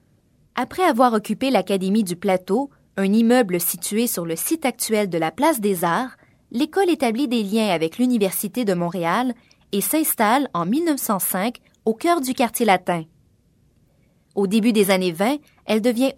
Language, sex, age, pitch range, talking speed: French, female, 20-39, 185-275 Hz, 155 wpm